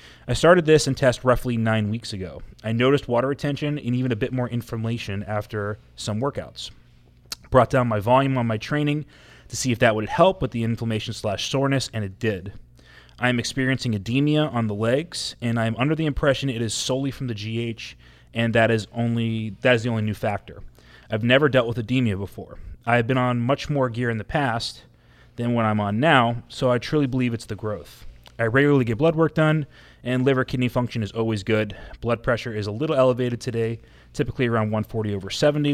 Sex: male